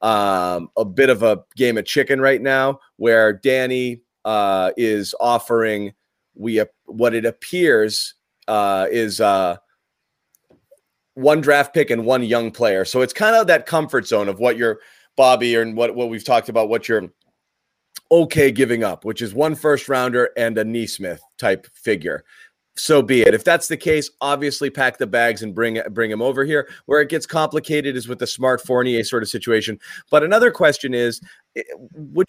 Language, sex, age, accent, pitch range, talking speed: English, male, 30-49, American, 110-150 Hz, 180 wpm